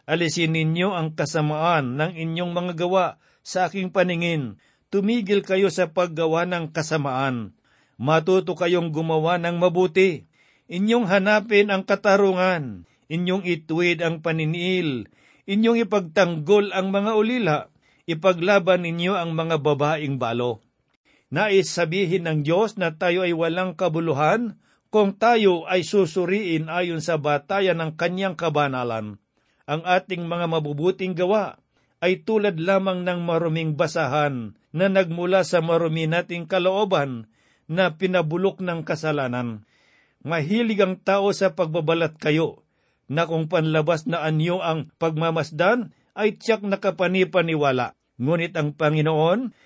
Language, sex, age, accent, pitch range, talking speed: Filipino, male, 50-69, native, 160-190 Hz, 120 wpm